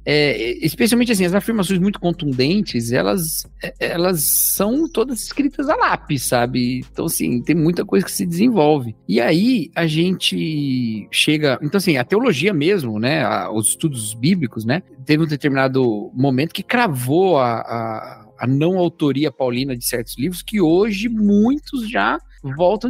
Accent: Brazilian